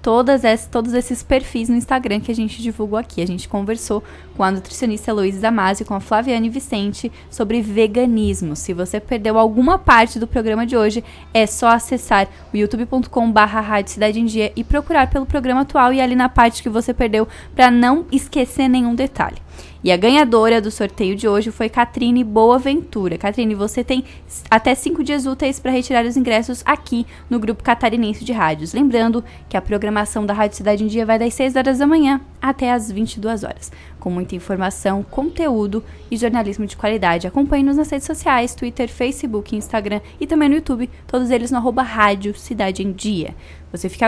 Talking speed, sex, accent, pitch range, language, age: 180 wpm, female, Brazilian, 210-250 Hz, Portuguese, 10-29